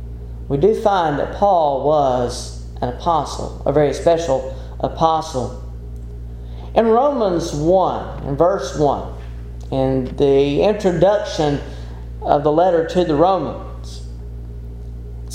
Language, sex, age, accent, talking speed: English, male, 40-59, American, 110 wpm